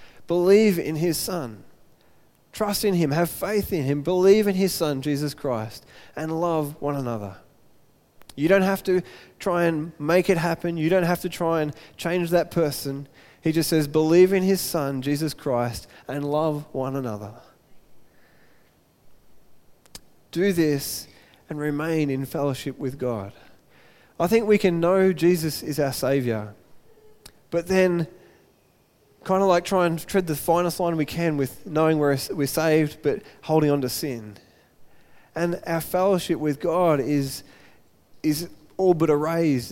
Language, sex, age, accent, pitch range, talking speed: English, male, 20-39, Australian, 140-175 Hz, 155 wpm